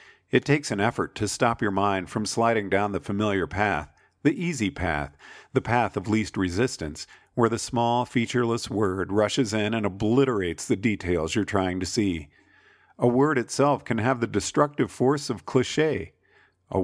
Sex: male